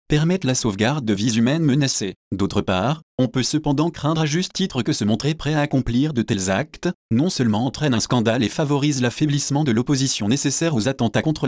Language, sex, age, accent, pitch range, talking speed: French, male, 30-49, French, 110-150 Hz, 205 wpm